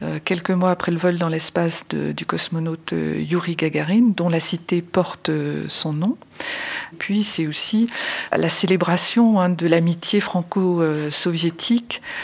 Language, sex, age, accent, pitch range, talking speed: French, female, 40-59, French, 165-190 Hz, 130 wpm